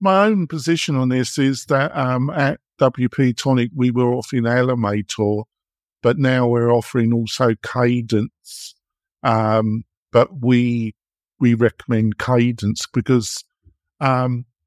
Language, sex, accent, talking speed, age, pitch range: English, male, British, 120 wpm, 50-69, 115-135 Hz